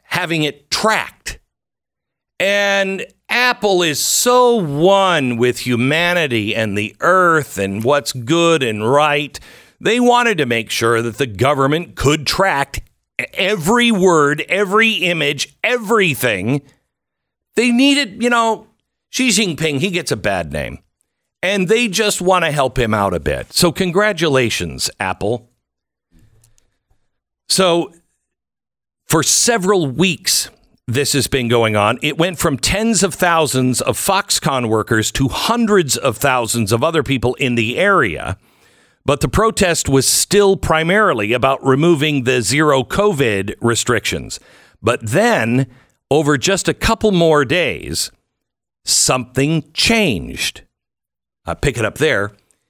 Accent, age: American, 50-69